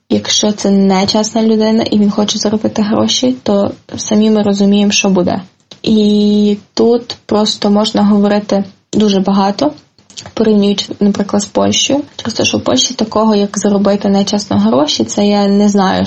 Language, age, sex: Ukrainian, 20-39, female